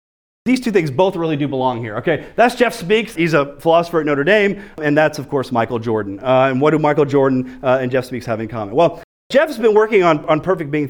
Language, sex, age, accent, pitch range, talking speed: English, male, 40-59, American, 135-190 Hz, 250 wpm